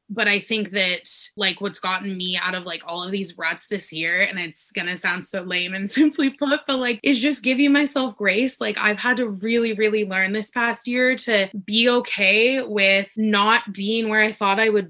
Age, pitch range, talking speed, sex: 20-39, 175-210 Hz, 220 wpm, female